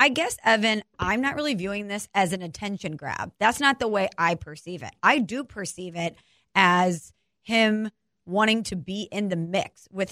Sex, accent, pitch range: female, American, 180-220 Hz